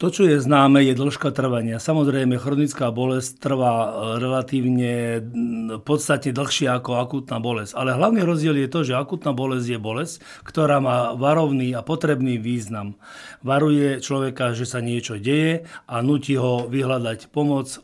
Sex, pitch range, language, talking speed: male, 125-150 Hz, Slovak, 150 wpm